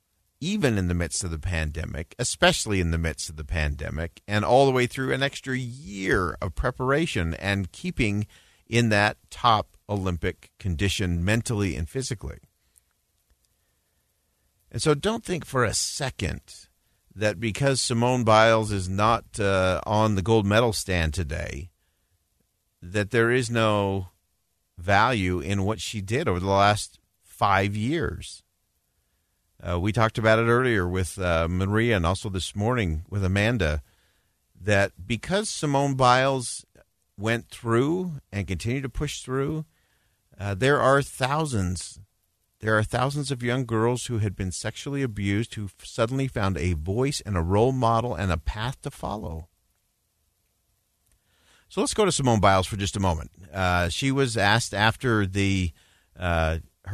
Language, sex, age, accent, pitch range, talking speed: English, male, 50-69, American, 90-120 Hz, 150 wpm